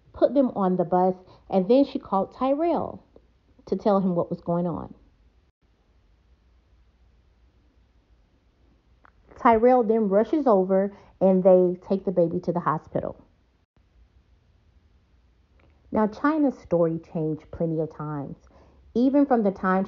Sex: female